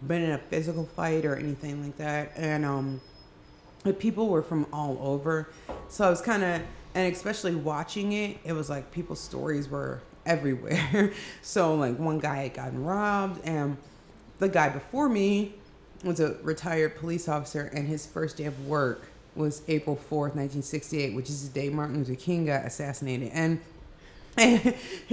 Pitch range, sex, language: 150-240 Hz, female, English